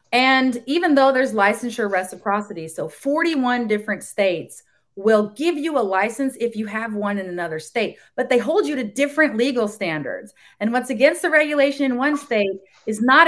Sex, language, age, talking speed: female, English, 30-49, 180 wpm